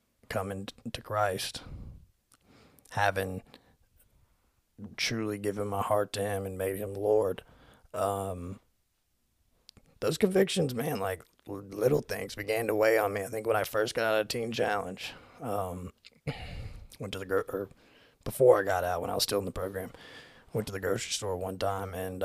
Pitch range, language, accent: 95-120 Hz, English, American